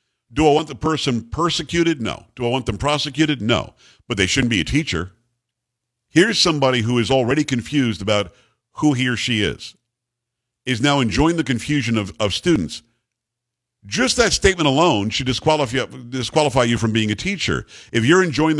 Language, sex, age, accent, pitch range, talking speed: English, male, 50-69, American, 115-145 Hz, 175 wpm